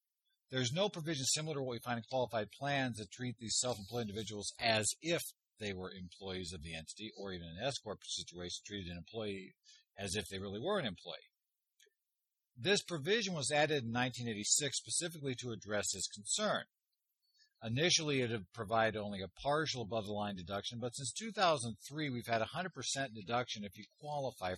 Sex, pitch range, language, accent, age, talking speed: male, 105-150 Hz, English, American, 50-69, 175 wpm